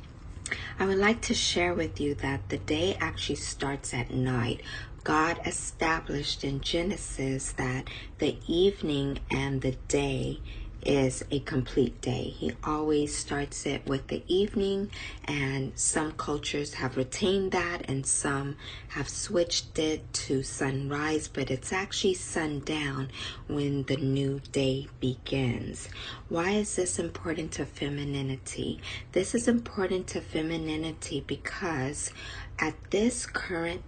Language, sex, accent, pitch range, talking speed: English, female, American, 130-165 Hz, 130 wpm